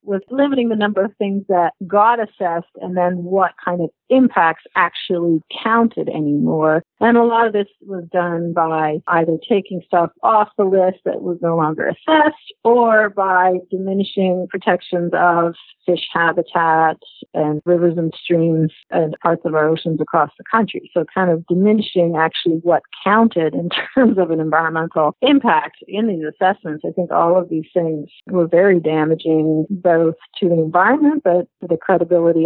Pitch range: 165-210 Hz